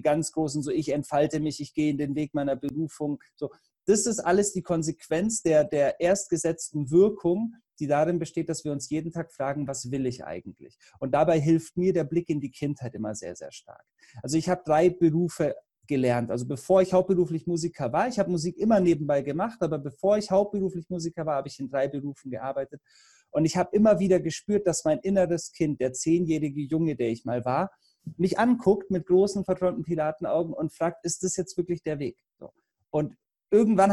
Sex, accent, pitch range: male, German, 150-185 Hz